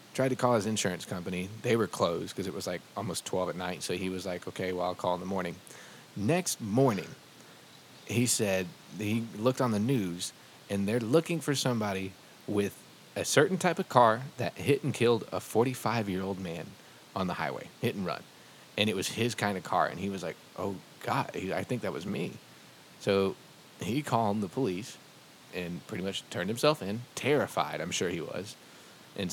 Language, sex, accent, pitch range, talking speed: English, male, American, 95-115 Hz, 195 wpm